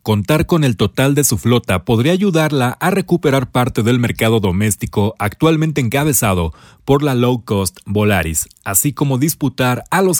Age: 40-59